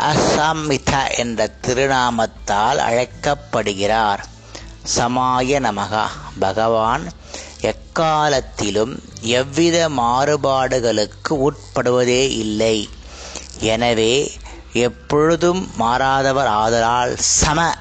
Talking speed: 55 wpm